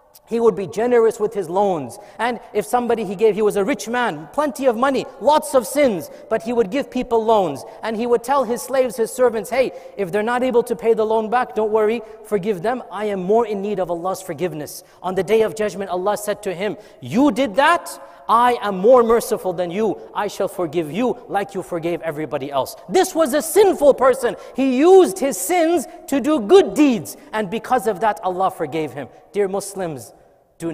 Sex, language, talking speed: male, English, 215 wpm